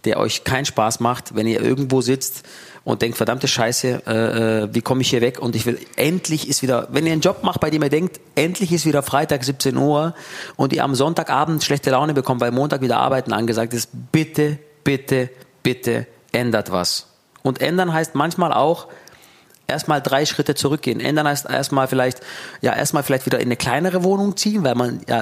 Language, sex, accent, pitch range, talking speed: German, male, German, 120-155 Hz, 200 wpm